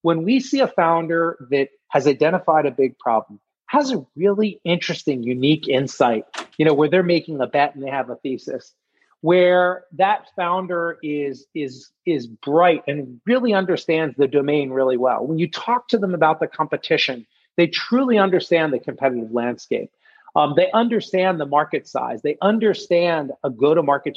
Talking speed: 165 wpm